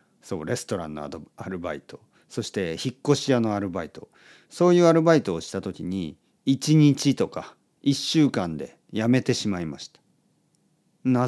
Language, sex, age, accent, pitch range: Japanese, male, 40-59, native, 115-170 Hz